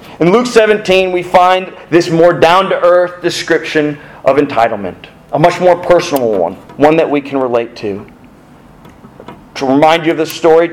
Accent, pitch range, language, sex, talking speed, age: American, 145-195 Hz, English, male, 155 wpm, 40-59